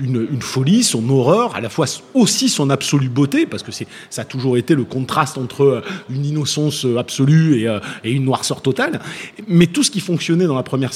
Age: 30-49